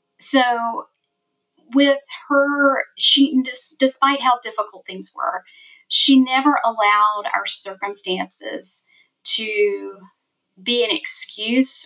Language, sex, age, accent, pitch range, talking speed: English, female, 30-49, American, 215-315 Hz, 90 wpm